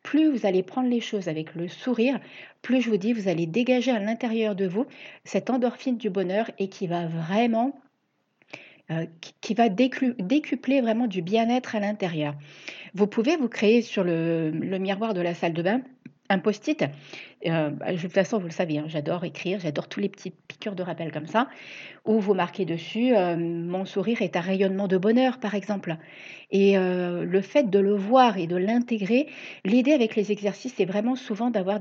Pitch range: 185-230 Hz